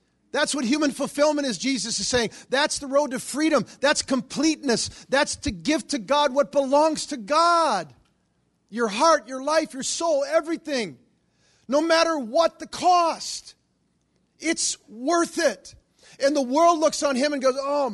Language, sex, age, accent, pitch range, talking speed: English, male, 50-69, American, 200-285 Hz, 160 wpm